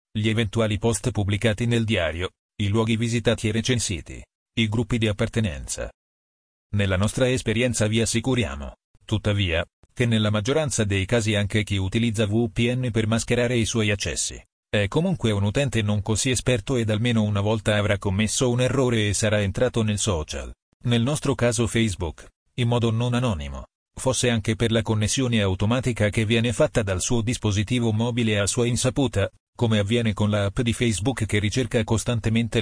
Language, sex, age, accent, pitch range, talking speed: Italian, male, 40-59, native, 105-120 Hz, 165 wpm